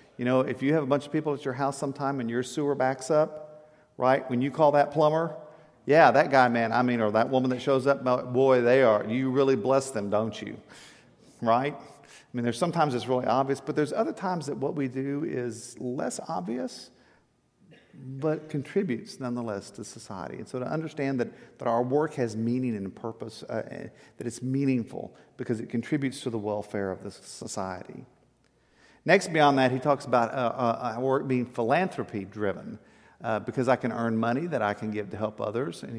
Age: 50-69